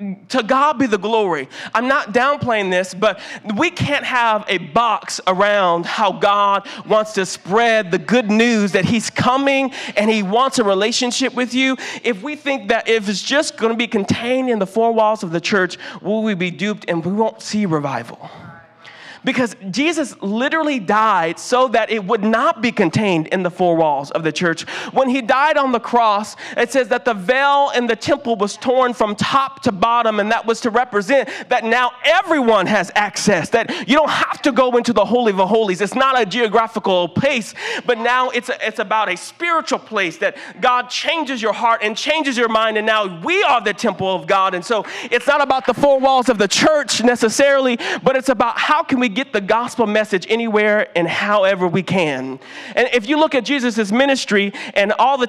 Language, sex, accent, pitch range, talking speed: English, male, American, 210-260 Hz, 205 wpm